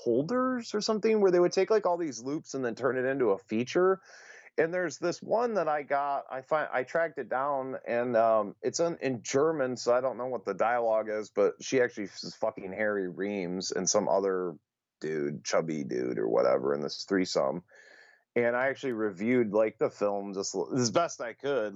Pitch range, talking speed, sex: 100-140 Hz, 210 wpm, male